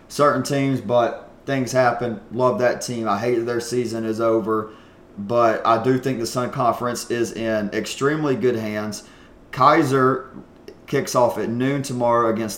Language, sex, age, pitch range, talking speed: English, male, 30-49, 110-125 Hz, 160 wpm